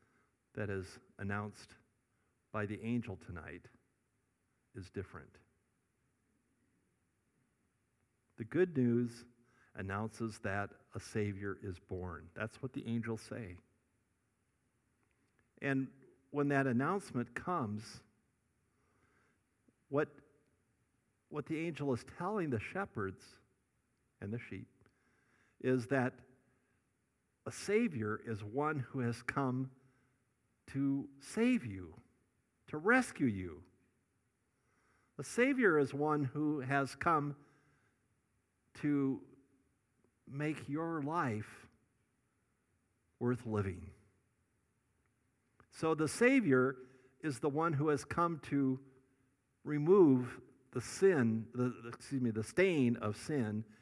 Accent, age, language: American, 50-69, English